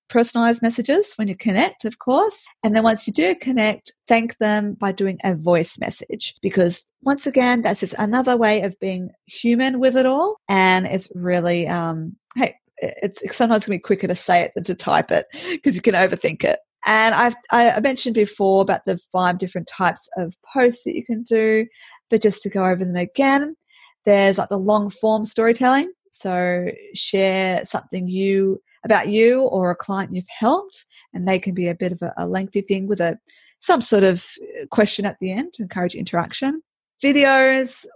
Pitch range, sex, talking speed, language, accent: 185-240 Hz, female, 190 wpm, English, Australian